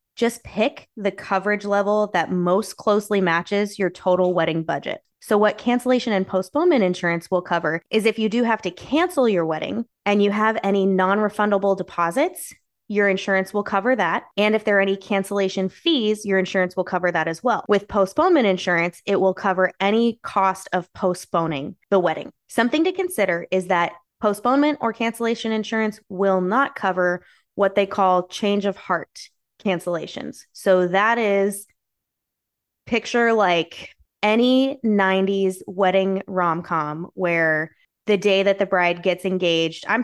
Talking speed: 155 wpm